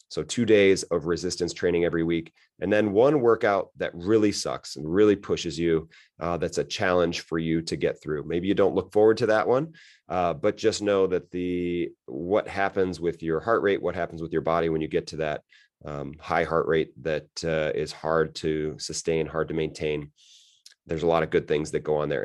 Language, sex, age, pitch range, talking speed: English, male, 30-49, 80-100 Hz, 220 wpm